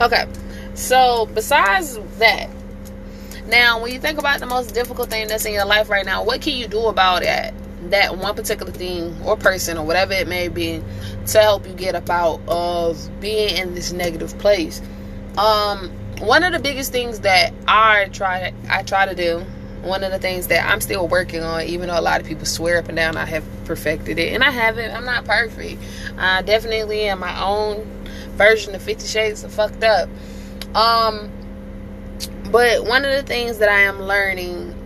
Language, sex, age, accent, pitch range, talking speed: English, female, 20-39, American, 175-220 Hz, 190 wpm